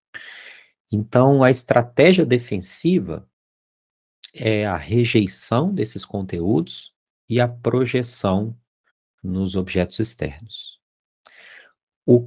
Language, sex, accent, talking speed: Portuguese, male, Brazilian, 80 wpm